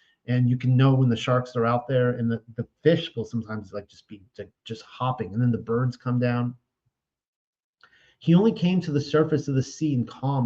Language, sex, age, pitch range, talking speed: English, male, 40-59, 120-145 Hz, 220 wpm